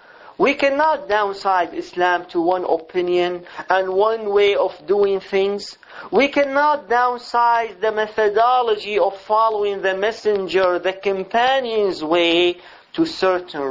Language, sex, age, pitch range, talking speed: English, male, 40-59, 170-245 Hz, 120 wpm